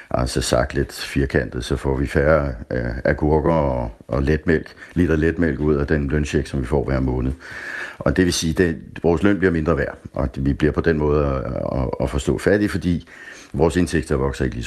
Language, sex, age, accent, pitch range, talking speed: Danish, male, 60-79, native, 70-85 Hz, 220 wpm